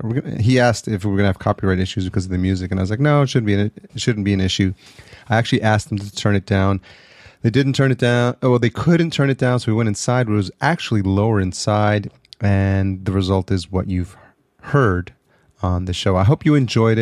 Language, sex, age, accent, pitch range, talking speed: English, male, 30-49, American, 95-115 Hz, 250 wpm